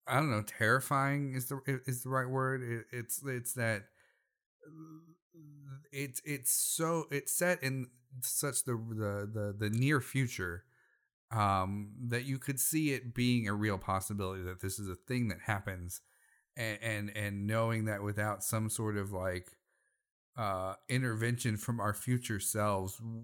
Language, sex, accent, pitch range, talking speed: English, male, American, 95-125 Hz, 150 wpm